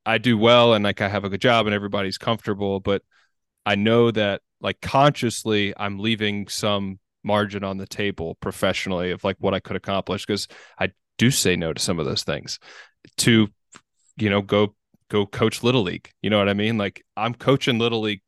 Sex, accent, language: male, American, English